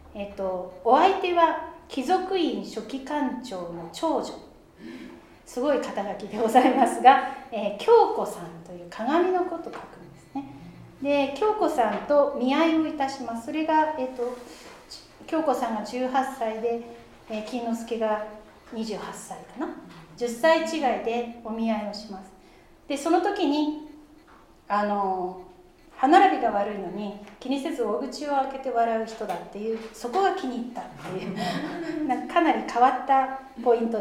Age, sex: 40-59, female